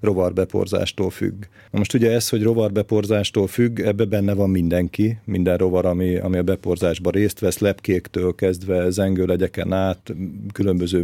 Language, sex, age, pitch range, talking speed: Hungarian, male, 40-59, 95-110 Hz, 140 wpm